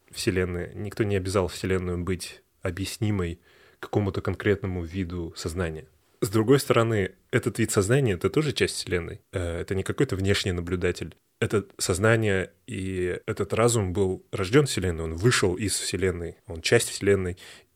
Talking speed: 145 wpm